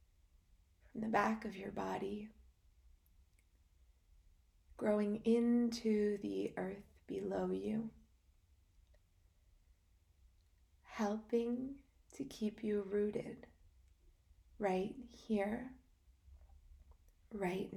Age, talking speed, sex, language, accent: 20-39, 70 wpm, female, English, American